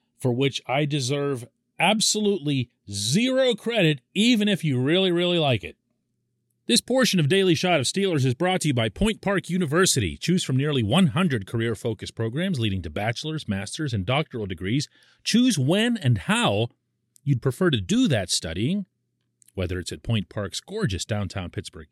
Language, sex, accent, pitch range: English, male, American, 115-185 Hz